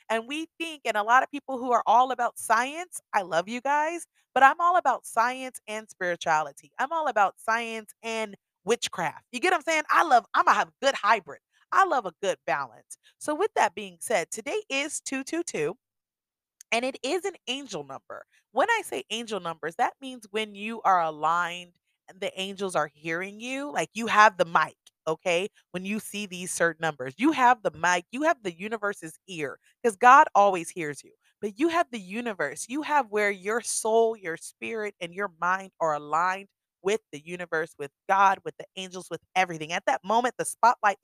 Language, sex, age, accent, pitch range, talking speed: English, female, 30-49, American, 175-245 Hz, 200 wpm